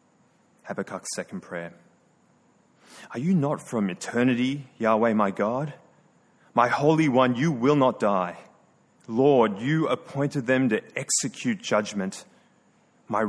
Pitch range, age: 120-165 Hz, 30-49